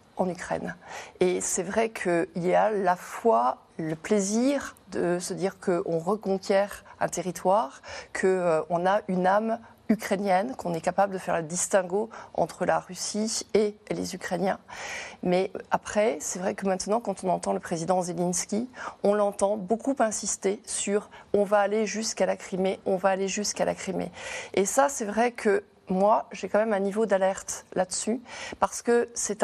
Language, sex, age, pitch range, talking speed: French, female, 30-49, 185-220 Hz, 175 wpm